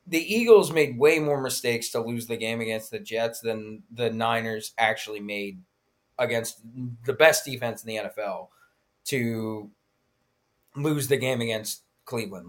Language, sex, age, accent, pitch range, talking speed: English, male, 20-39, American, 110-150 Hz, 150 wpm